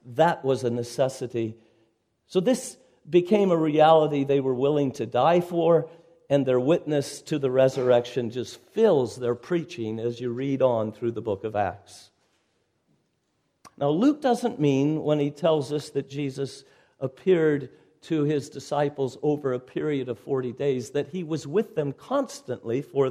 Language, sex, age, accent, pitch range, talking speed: English, male, 50-69, American, 135-190 Hz, 160 wpm